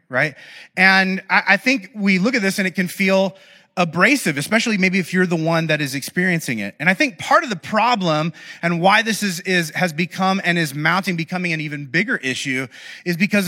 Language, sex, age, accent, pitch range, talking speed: English, male, 30-49, American, 155-190 Hz, 210 wpm